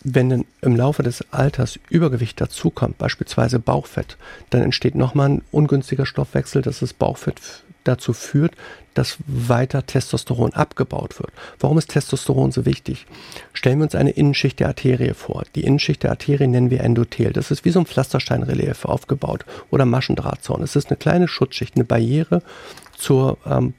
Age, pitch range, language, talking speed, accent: 50-69, 125-145 Hz, German, 160 wpm, German